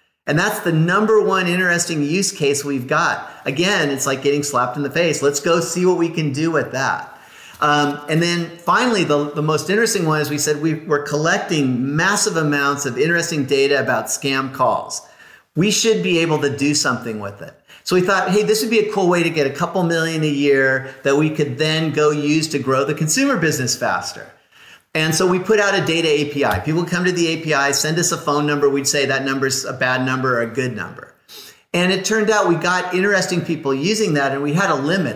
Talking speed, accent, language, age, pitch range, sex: 225 wpm, American, English, 40-59, 140-175 Hz, male